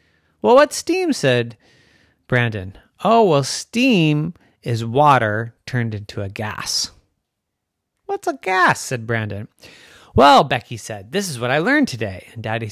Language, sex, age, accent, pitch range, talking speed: English, male, 30-49, American, 110-160 Hz, 140 wpm